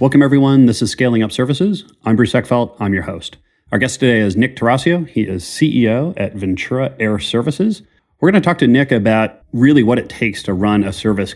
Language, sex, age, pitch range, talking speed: English, male, 30-49, 95-115 Hz, 215 wpm